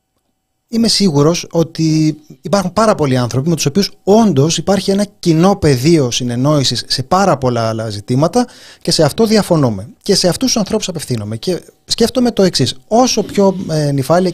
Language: Greek